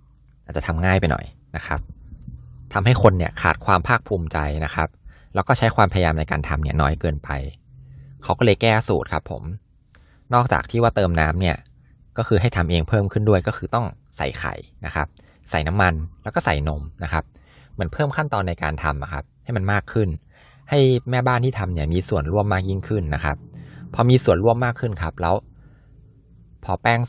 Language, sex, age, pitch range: Thai, male, 20-39, 75-105 Hz